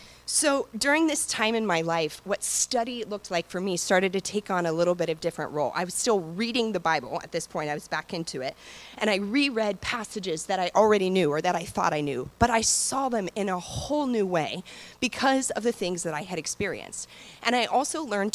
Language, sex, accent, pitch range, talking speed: English, female, American, 170-230 Hz, 240 wpm